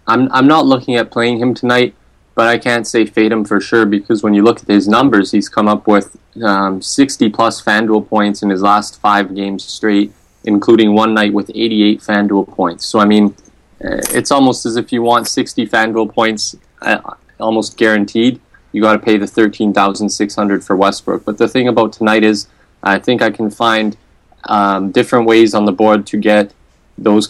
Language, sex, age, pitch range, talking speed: English, male, 20-39, 100-115 Hz, 195 wpm